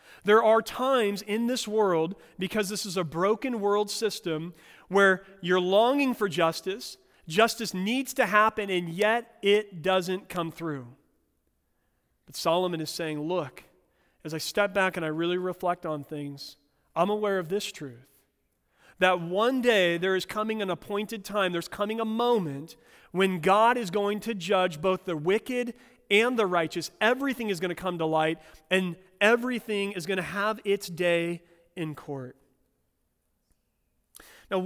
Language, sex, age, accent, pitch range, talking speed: English, male, 40-59, American, 170-215 Hz, 160 wpm